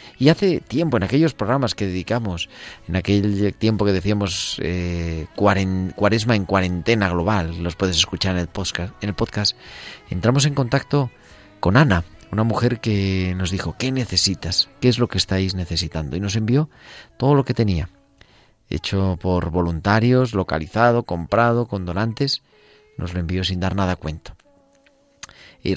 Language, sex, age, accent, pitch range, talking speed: Spanish, male, 40-59, Spanish, 90-110 Hz, 155 wpm